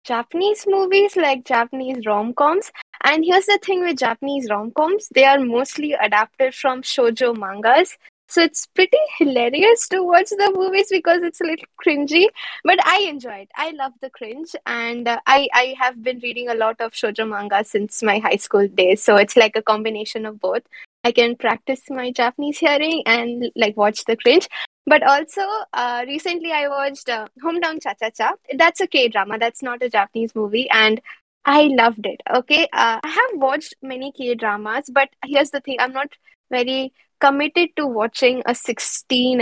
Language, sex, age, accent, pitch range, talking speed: English, female, 20-39, Indian, 230-300 Hz, 175 wpm